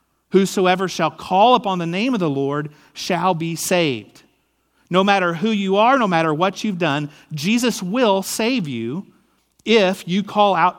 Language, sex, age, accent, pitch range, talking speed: English, male, 40-59, American, 150-205 Hz, 165 wpm